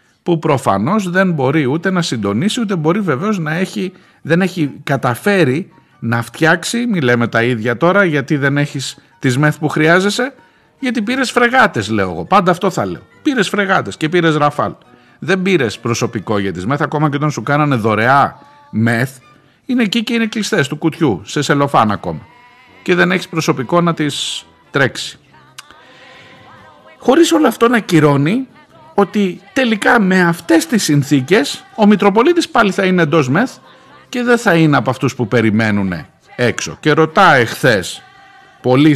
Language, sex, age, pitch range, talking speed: Greek, male, 50-69, 120-195 Hz, 160 wpm